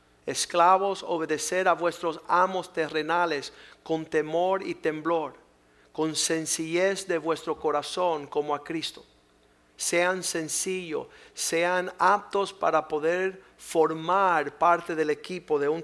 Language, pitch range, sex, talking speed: Spanish, 140-160 Hz, male, 115 wpm